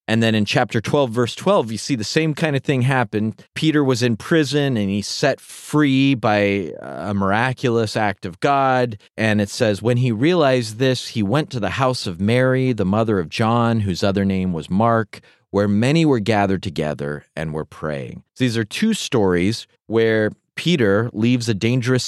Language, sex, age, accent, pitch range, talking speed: English, male, 30-49, American, 105-145 Hz, 190 wpm